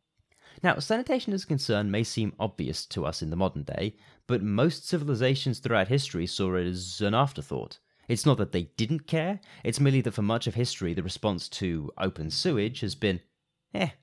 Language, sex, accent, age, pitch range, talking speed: English, male, British, 30-49, 95-135 Hz, 190 wpm